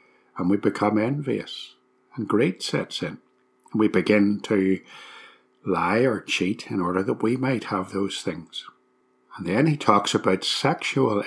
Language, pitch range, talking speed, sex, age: English, 90-115 Hz, 155 wpm, male, 60-79